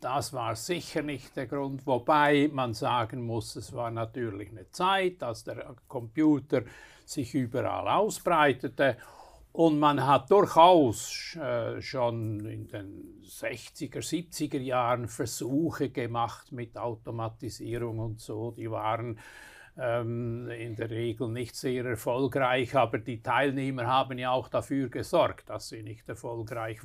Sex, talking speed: male, 125 wpm